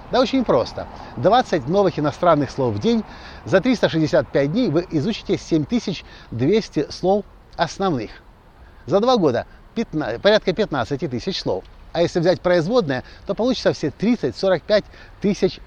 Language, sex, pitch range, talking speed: Russian, male, 135-190 Hz, 125 wpm